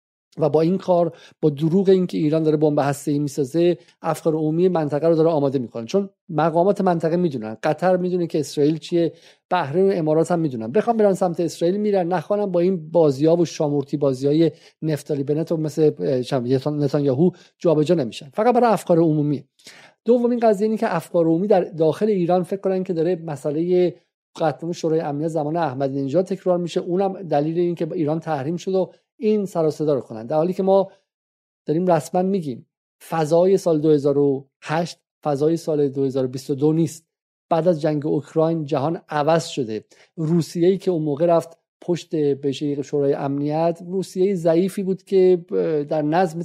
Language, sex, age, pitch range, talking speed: Persian, male, 50-69, 150-180 Hz, 165 wpm